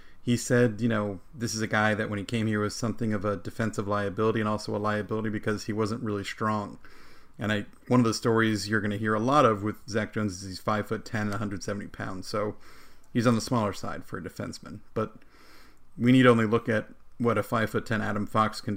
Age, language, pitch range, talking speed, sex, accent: 40-59, English, 105-115 Hz, 240 wpm, male, American